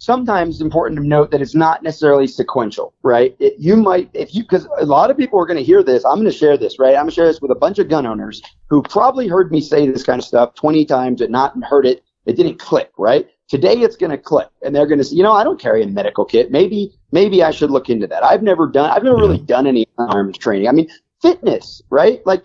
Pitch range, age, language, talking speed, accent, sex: 135-185 Hz, 40-59, English, 270 wpm, American, male